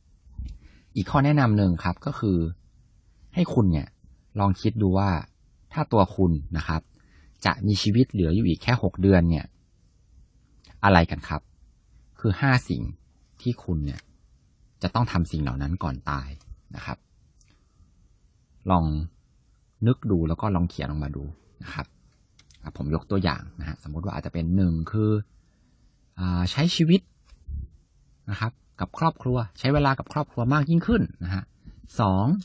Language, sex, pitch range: Thai, male, 80-110 Hz